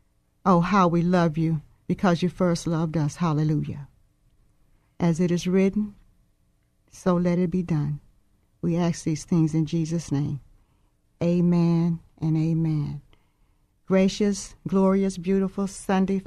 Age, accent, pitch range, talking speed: 50-69, American, 160-200 Hz, 125 wpm